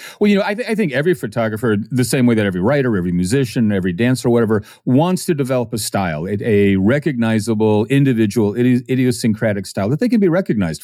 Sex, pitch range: male, 115-165 Hz